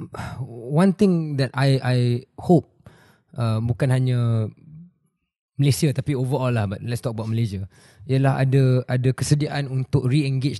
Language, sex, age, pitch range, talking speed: Malay, male, 20-39, 120-145 Hz, 135 wpm